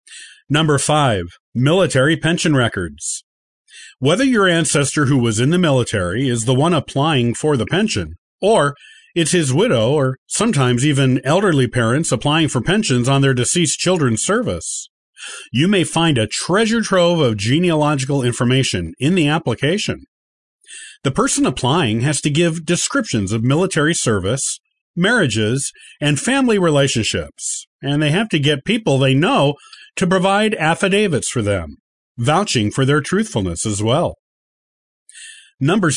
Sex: male